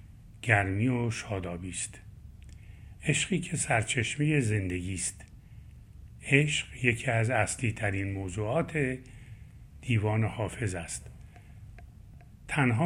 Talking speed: 80 wpm